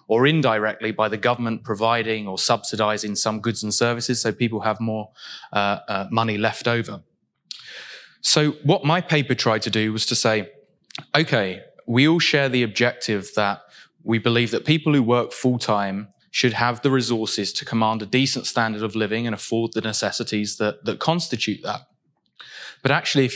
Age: 20-39